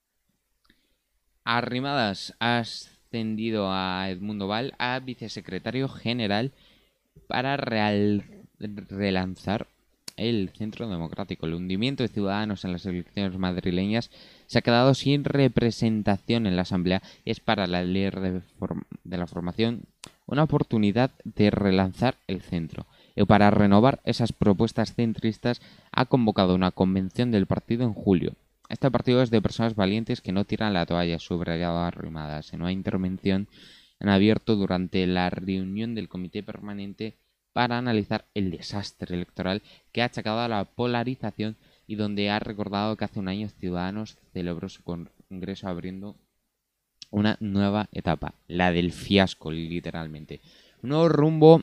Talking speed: 135 wpm